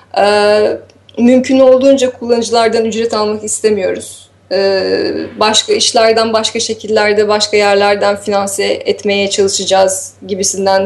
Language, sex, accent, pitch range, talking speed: Turkish, female, native, 200-245 Hz, 100 wpm